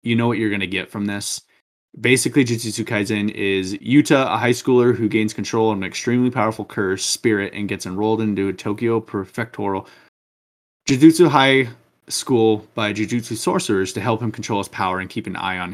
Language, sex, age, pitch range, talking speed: English, male, 20-39, 100-120 Hz, 190 wpm